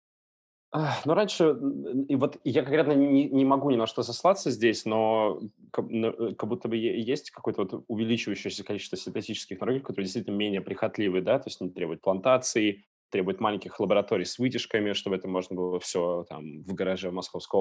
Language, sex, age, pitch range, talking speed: Russian, male, 20-39, 95-115 Hz, 165 wpm